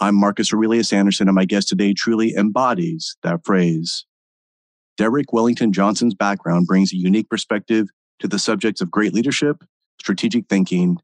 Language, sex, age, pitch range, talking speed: English, male, 30-49, 95-115 Hz, 150 wpm